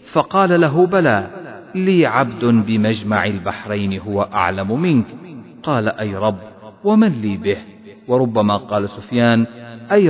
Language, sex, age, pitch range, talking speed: Arabic, male, 40-59, 110-155 Hz, 120 wpm